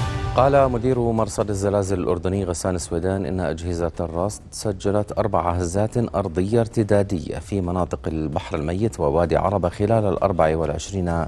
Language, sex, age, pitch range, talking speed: Arabic, male, 40-59, 85-105 Hz, 130 wpm